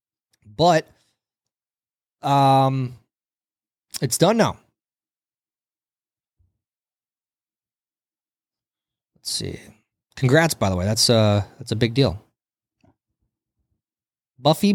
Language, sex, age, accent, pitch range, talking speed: English, male, 20-39, American, 110-145 Hz, 75 wpm